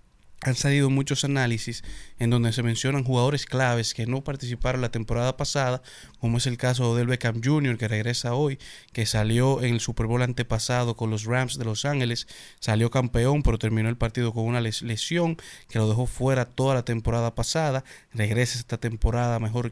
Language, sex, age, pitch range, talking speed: Spanish, male, 30-49, 115-130 Hz, 185 wpm